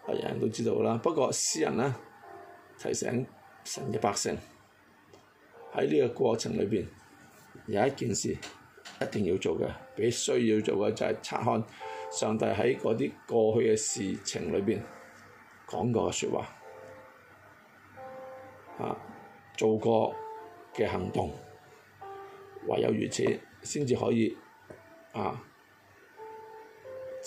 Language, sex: Chinese, male